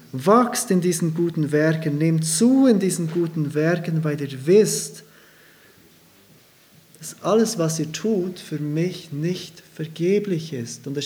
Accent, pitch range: German, 150-180 Hz